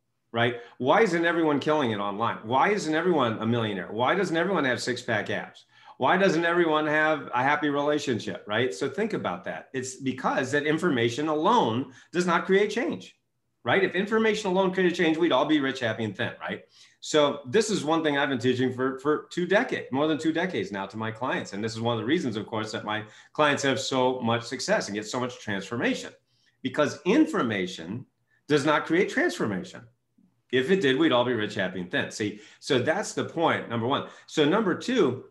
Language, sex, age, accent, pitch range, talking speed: English, male, 40-59, American, 120-150 Hz, 205 wpm